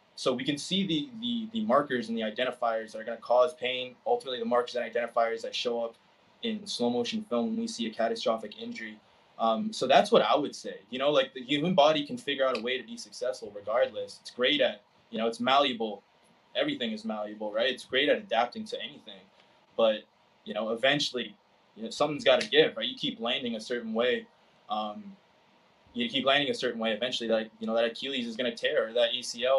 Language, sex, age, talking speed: English, male, 20-39, 225 wpm